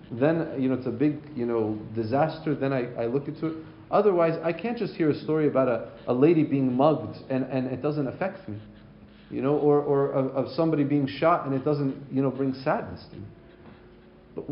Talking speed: 215 wpm